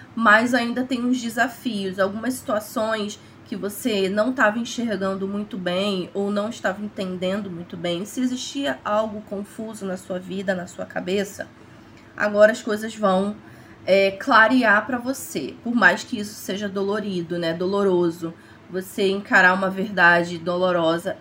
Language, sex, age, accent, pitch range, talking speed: Portuguese, female, 20-39, Brazilian, 185-230 Hz, 140 wpm